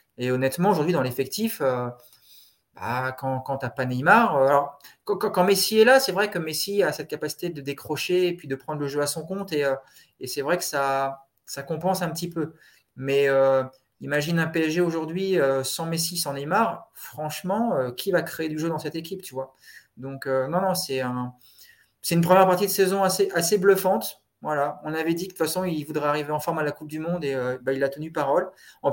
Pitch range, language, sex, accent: 135-170 Hz, French, male, French